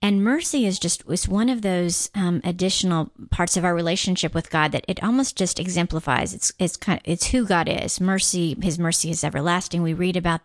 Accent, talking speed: American, 210 wpm